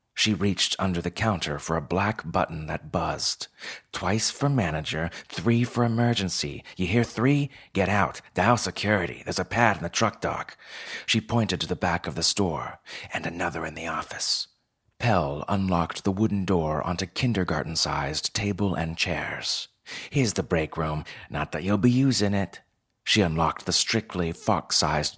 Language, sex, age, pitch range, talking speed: English, male, 30-49, 85-110 Hz, 165 wpm